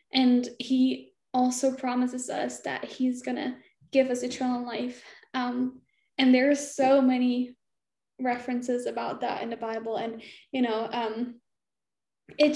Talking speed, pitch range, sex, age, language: 145 wpm, 240-275 Hz, female, 10-29, English